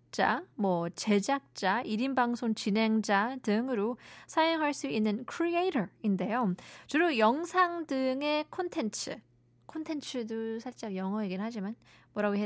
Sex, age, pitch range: female, 20-39, 200-275 Hz